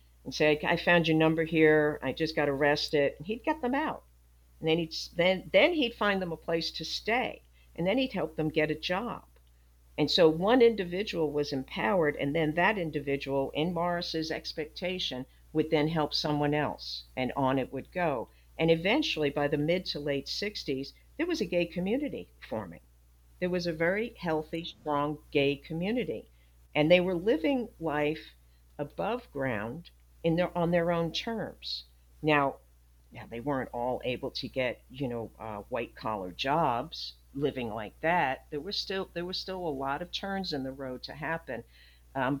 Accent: American